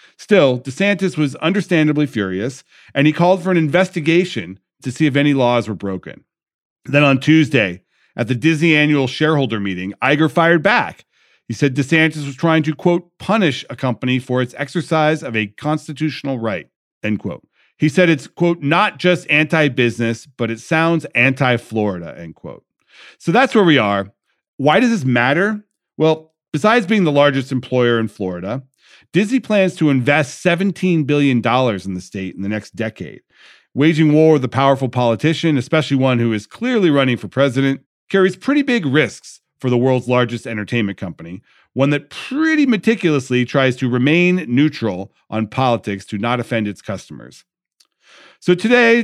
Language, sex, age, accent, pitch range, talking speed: English, male, 40-59, American, 115-160 Hz, 165 wpm